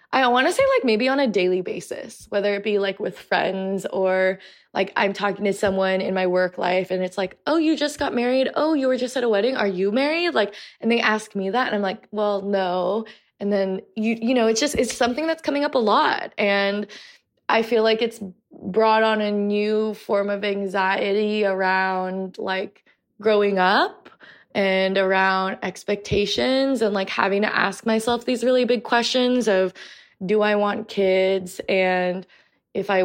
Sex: female